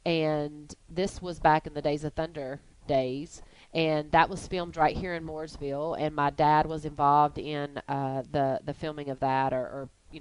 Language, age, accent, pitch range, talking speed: English, 30-49, American, 145-195 Hz, 195 wpm